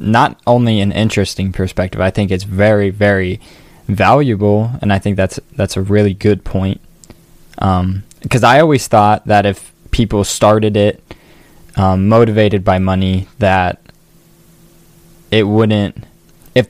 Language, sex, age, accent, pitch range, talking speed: English, male, 10-29, American, 95-110 Hz, 135 wpm